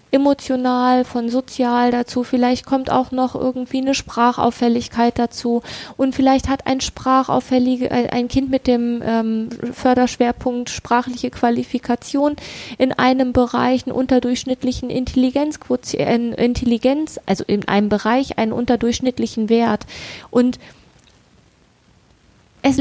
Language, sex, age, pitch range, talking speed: German, female, 20-39, 240-275 Hz, 105 wpm